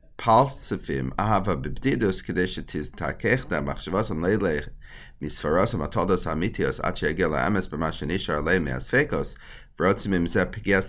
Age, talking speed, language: 30-49, 155 wpm, English